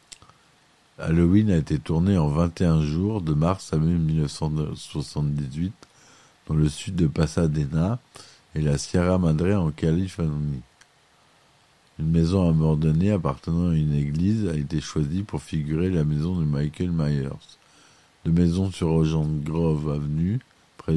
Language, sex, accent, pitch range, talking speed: French, male, French, 75-90 Hz, 135 wpm